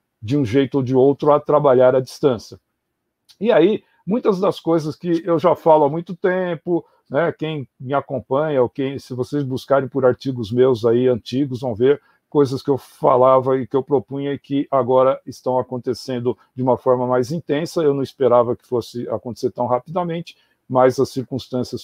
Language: Portuguese